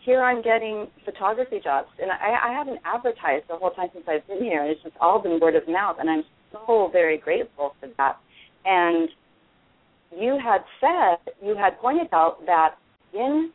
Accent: American